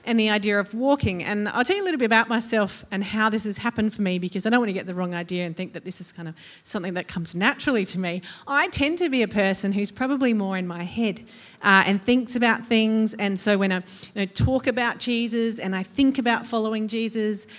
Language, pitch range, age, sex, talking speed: English, 185-225 Hz, 40-59, female, 255 wpm